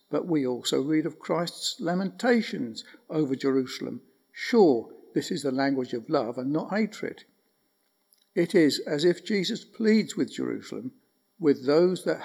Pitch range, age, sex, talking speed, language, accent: 145-200 Hz, 60-79, male, 145 wpm, English, British